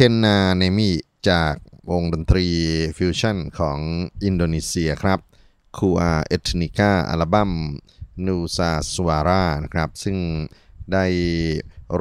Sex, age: male, 30-49